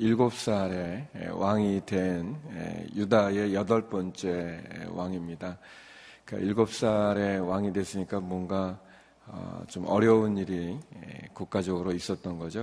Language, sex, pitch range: Korean, male, 90-105 Hz